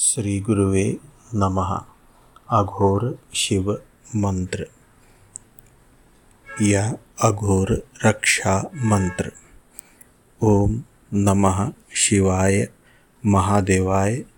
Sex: male